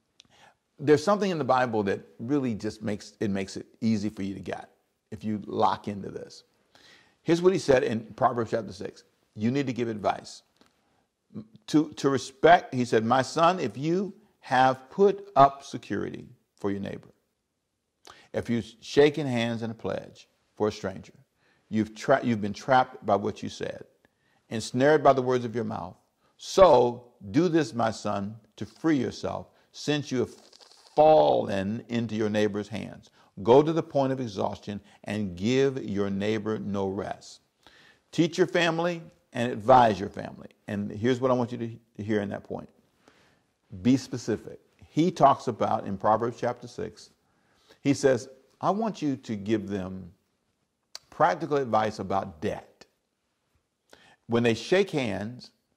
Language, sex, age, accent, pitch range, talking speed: English, male, 50-69, American, 105-140 Hz, 160 wpm